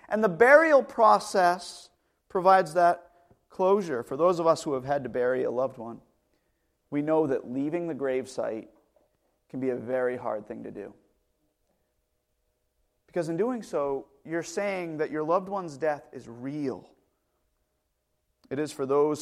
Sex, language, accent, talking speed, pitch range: male, English, American, 155 wpm, 130-180 Hz